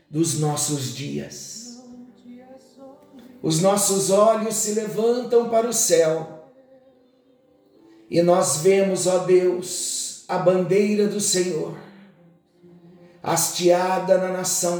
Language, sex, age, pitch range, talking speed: Portuguese, male, 60-79, 180-260 Hz, 95 wpm